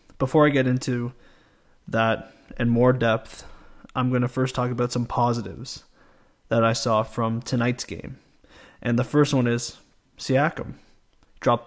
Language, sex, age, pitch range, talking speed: English, male, 20-39, 120-145 Hz, 150 wpm